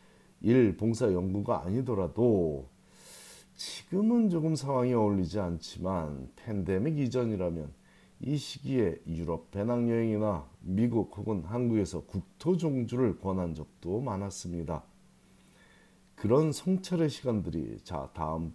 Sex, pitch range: male, 85-125 Hz